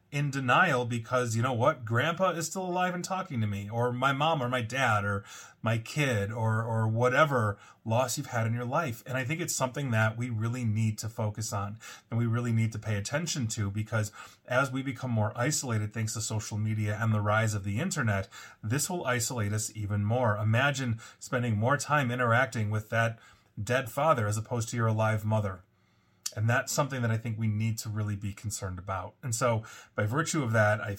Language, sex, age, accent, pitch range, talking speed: English, male, 30-49, American, 105-125 Hz, 210 wpm